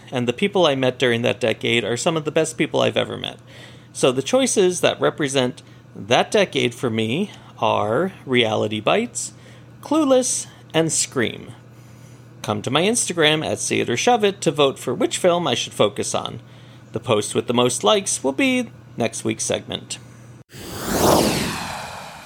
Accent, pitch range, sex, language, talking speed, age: American, 120-170 Hz, male, English, 160 wpm, 40-59